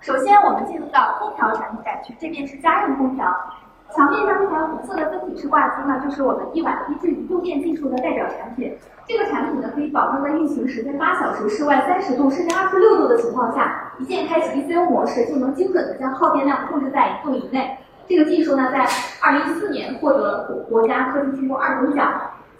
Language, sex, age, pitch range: Chinese, female, 20-39, 265-350 Hz